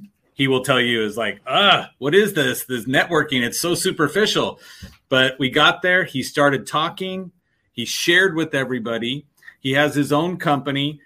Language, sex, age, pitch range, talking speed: English, male, 40-59, 125-160 Hz, 170 wpm